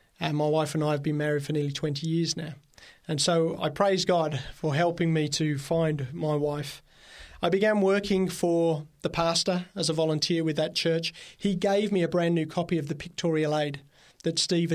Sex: male